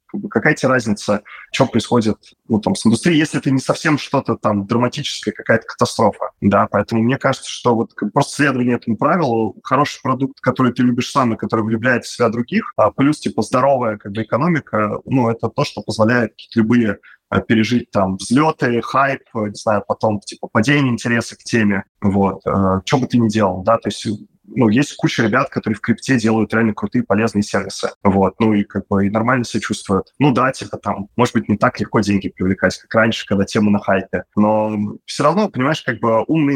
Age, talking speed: 20-39, 200 wpm